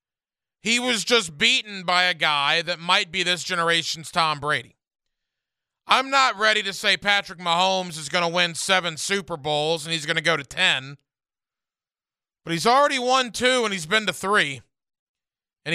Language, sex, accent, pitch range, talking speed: English, male, American, 165-205 Hz, 175 wpm